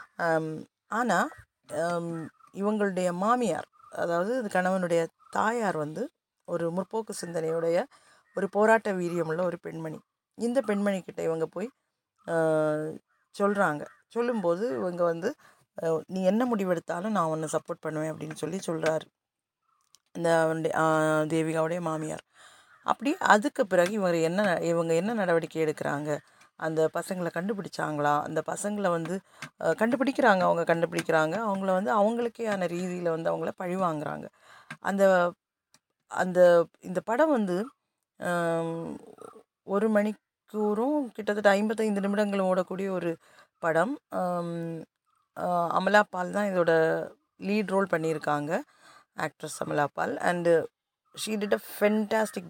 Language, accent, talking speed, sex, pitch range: Tamil, native, 105 wpm, female, 165-210 Hz